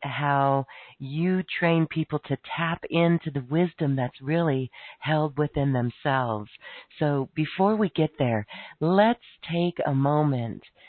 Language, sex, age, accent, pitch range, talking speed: English, female, 40-59, American, 130-160 Hz, 125 wpm